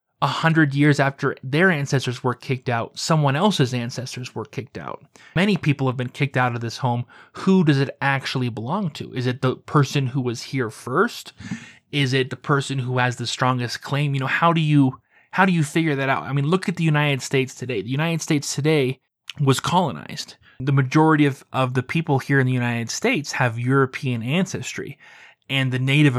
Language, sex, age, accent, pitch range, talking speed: English, male, 20-39, American, 125-150 Hz, 205 wpm